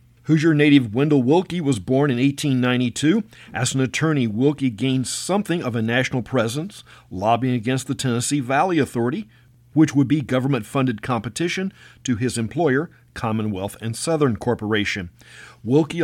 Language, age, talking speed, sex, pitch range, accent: English, 50-69, 140 wpm, male, 115-145 Hz, American